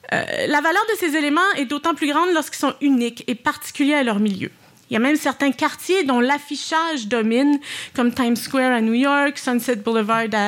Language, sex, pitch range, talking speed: French, female, 230-290 Hz, 205 wpm